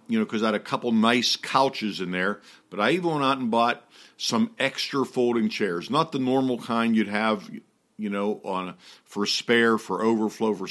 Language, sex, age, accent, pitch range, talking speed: English, male, 50-69, American, 105-125 Hz, 195 wpm